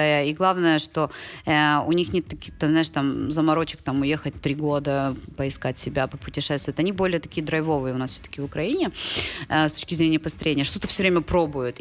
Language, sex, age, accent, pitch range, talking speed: Russian, female, 20-39, native, 155-195 Hz, 185 wpm